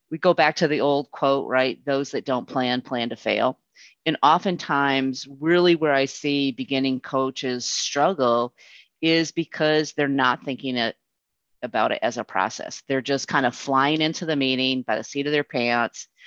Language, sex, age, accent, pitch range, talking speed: English, female, 30-49, American, 130-165 Hz, 175 wpm